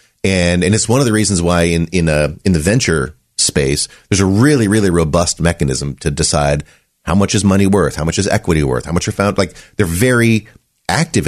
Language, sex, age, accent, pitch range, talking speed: English, male, 30-49, American, 80-110 Hz, 220 wpm